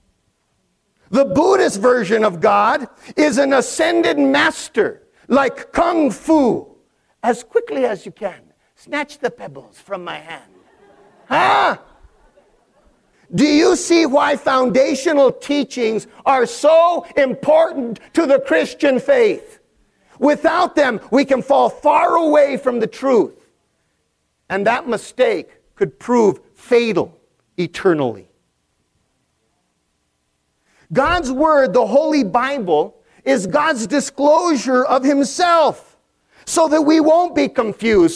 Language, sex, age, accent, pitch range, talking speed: English, male, 50-69, American, 245-320 Hz, 110 wpm